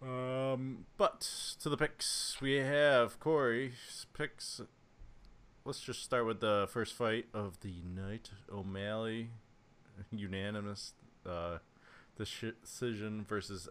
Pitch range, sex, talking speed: 100-120 Hz, male, 105 wpm